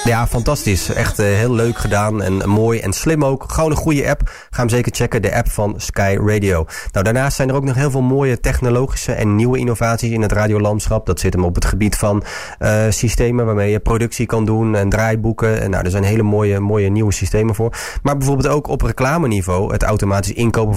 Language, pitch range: Dutch, 100-120 Hz